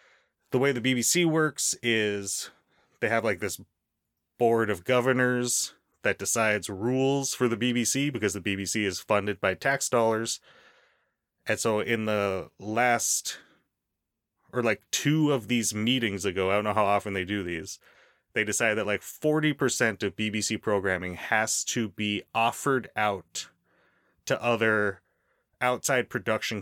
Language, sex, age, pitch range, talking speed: English, male, 30-49, 100-120 Hz, 145 wpm